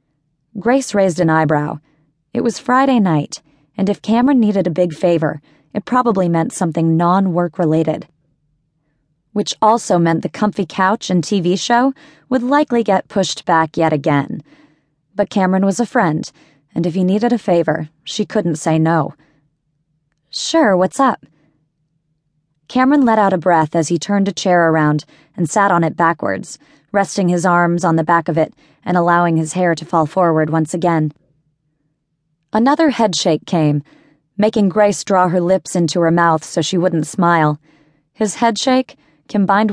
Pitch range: 155-195 Hz